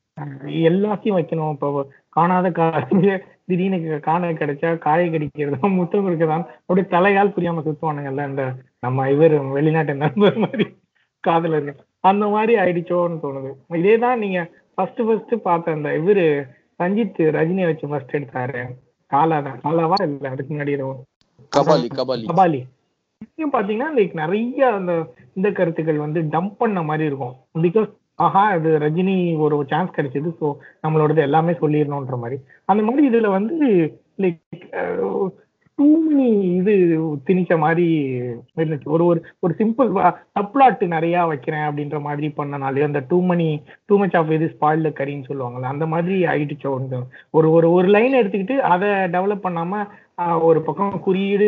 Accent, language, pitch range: native, Tamil, 150-195 Hz